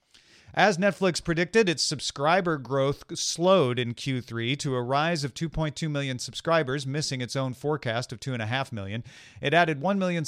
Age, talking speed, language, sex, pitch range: 40-59, 160 wpm, English, male, 120-160 Hz